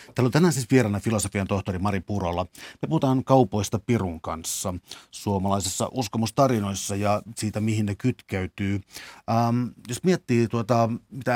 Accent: native